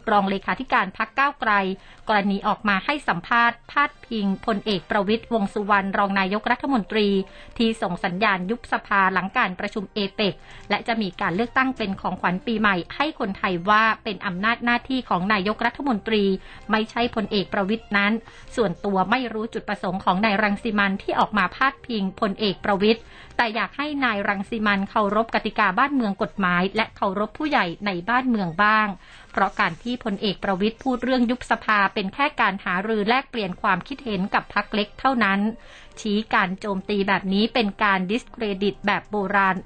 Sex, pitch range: female, 200-235 Hz